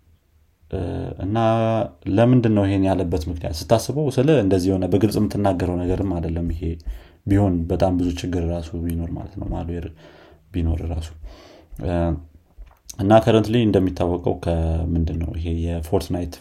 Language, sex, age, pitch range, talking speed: Amharic, male, 30-49, 85-95 Hz, 110 wpm